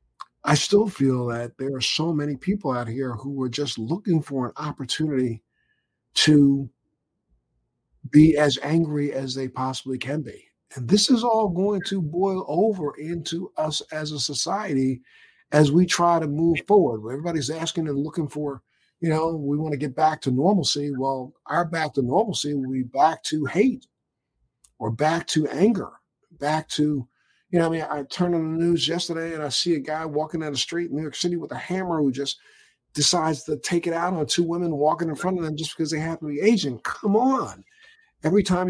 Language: English